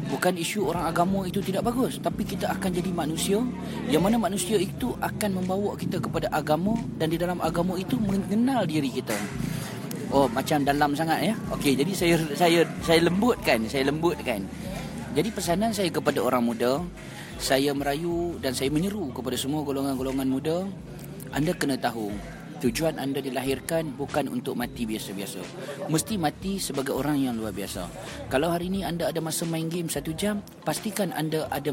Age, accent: 30-49, Indonesian